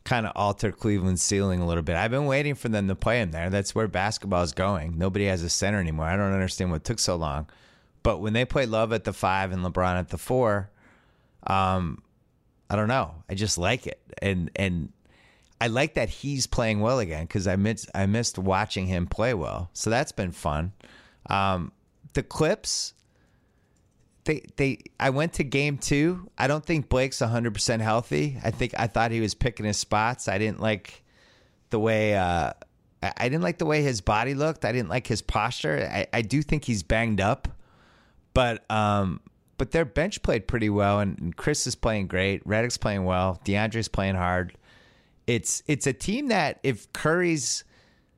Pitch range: 95-125 Hz